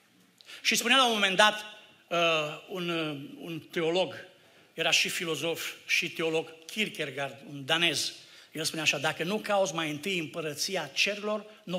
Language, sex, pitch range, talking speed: Romanian, male, 145-190 Hz, 155 wpm